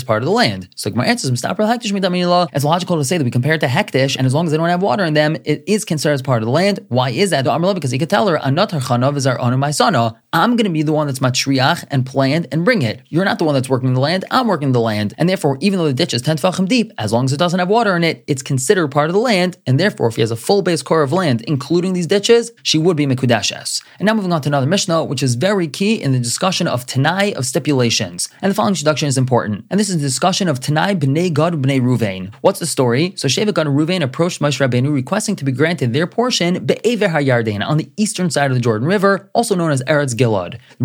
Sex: male